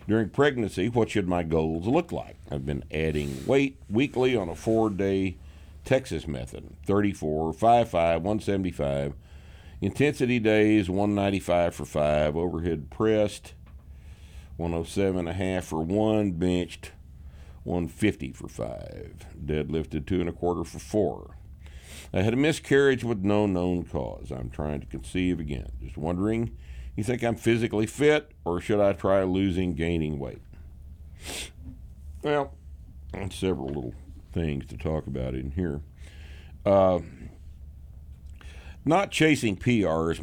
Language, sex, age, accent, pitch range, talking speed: English, male, 60-79, American, 75-95 Hz, 125 wpm